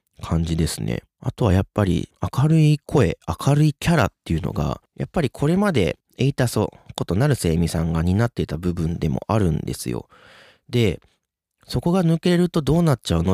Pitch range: 85-130 Hz